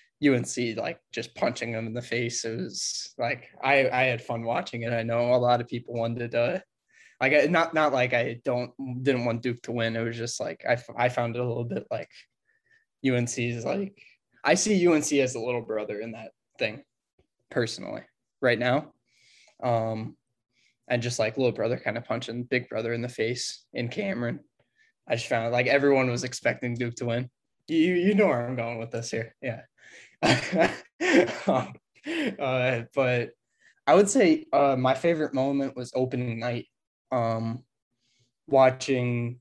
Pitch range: 120-135 Hz